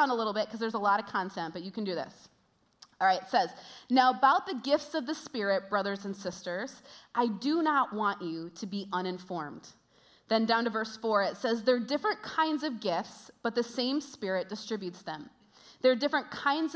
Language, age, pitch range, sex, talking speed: English, 30-49, 210-270 Hz, female, 210 wpm